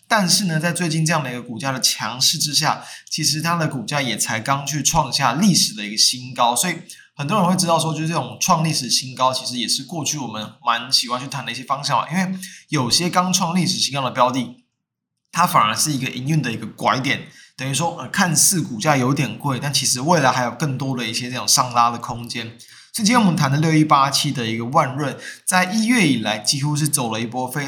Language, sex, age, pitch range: Chinese, male, 20-39, 125-160 Hz